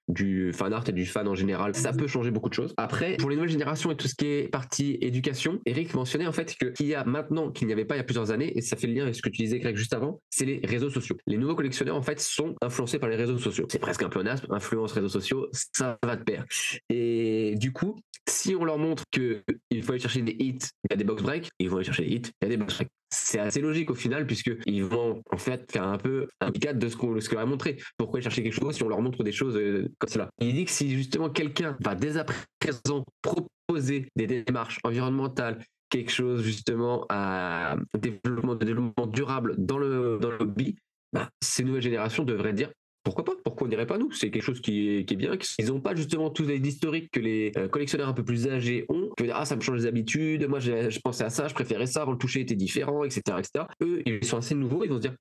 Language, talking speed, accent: French, 270 wpm, French